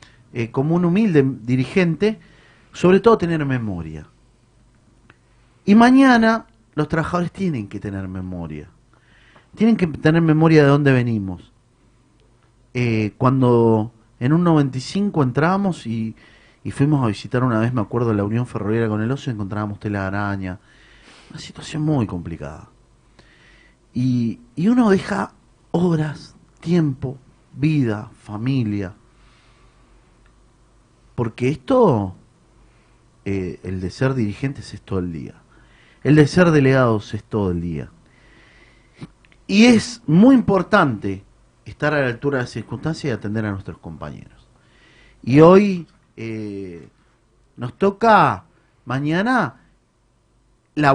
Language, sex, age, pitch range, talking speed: Spanish, male, 40-59, 110-155 Hz, 120 wpm